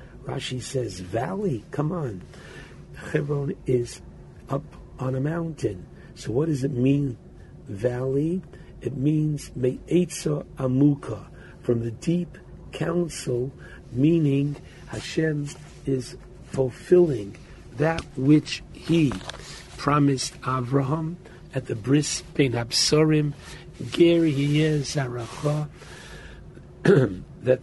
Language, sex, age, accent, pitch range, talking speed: English, male, 60-79, American, 125-150 Hz, 85 wpm